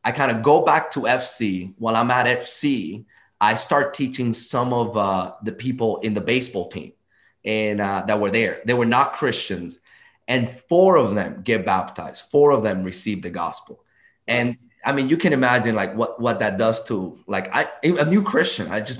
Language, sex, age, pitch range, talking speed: English, male, 20-39, 105-125 Hz, 200 wpm